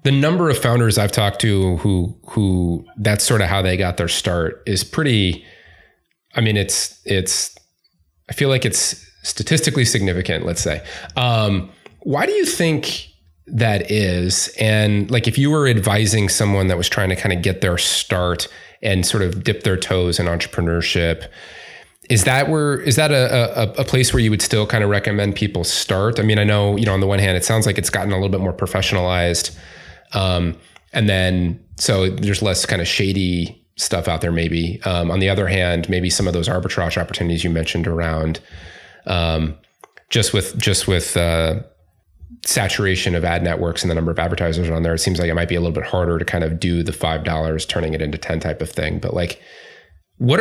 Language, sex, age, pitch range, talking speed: English, male, 30-49, 85-110 Hz, 200 wpm